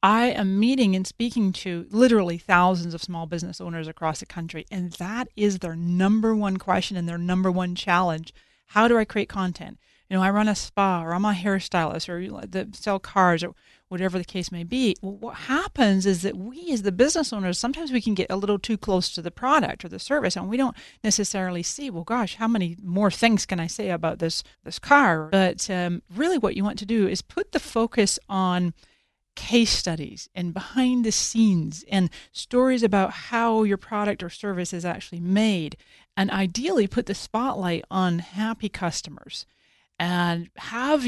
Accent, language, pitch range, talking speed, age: American, English, 175-225 Hz, 195 wpm, 40-59